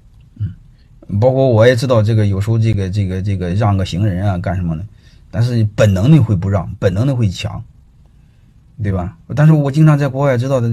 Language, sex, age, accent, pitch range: Chinese, male, 30-49, native, 100-130 Hz